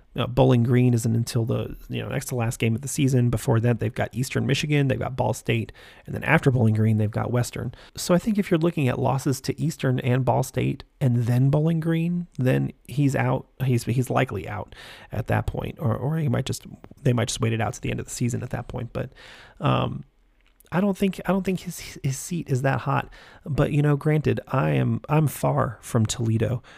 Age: 30-49